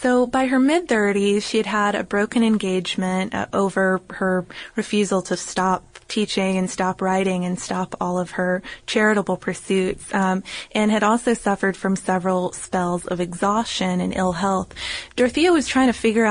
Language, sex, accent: English, female, American